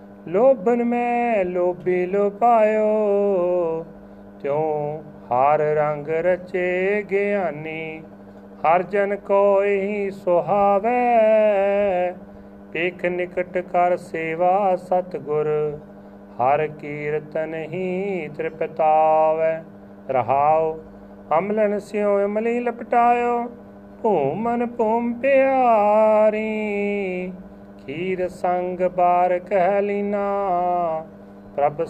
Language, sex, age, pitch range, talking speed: Punjabi, male, 30-49, 150-205 Hz, 75 wpm